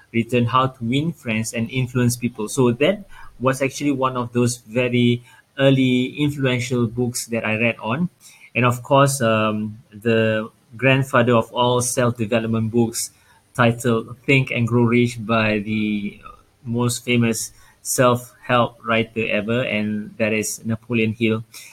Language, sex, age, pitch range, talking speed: English, male, 20-39, 115-130 Hz, 140 wpm